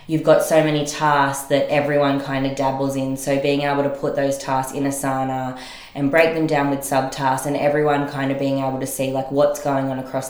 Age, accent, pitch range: 20-39, Australian, 135-150 Hz